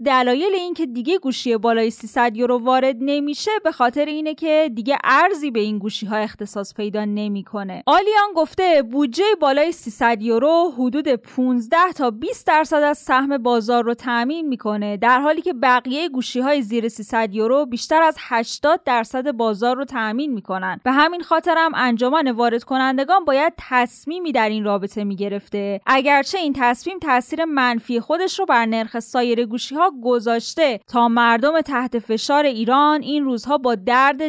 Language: Persian